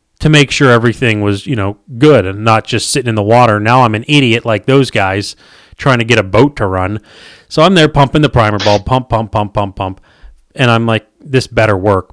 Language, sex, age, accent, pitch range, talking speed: English, male, 30-49, American, 105-140 Hz, 235 wpm